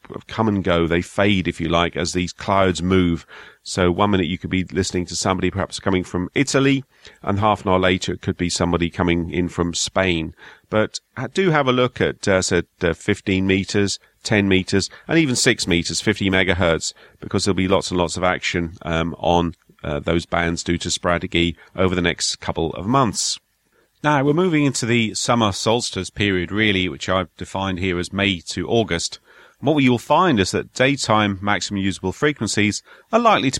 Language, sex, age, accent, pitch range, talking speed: English, male, 40-59, British, 90-110 Hz, 190 wpm